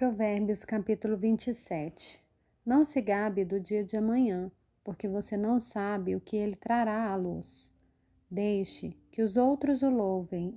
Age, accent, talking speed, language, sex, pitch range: 30-49, Brazilian, 150 wpm, Portuguese, female, 195-240 Hz